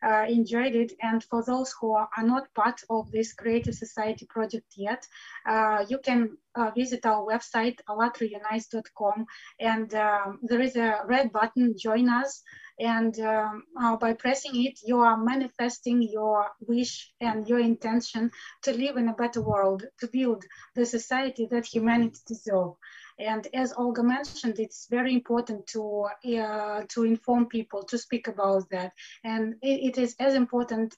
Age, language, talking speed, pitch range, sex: 20-39, English, 160 wpm, 220-245 Hz, female